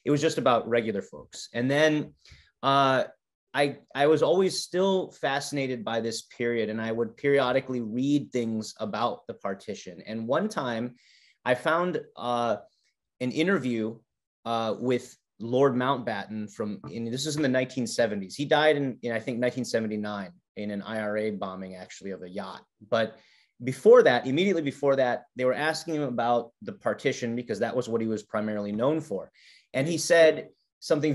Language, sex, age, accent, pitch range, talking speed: Hindi, male, 30-49, American, 110-145 Hz, 170 wpm